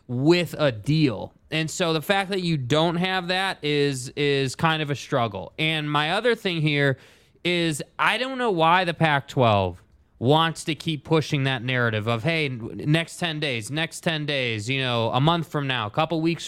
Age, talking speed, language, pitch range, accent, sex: 20-39, 195 wpm, English, 140-180 Hz, American, male